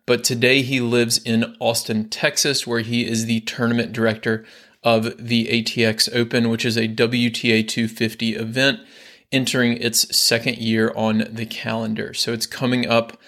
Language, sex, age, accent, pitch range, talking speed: English, male, 20-39, American, 115-125 Hz, 155 wpm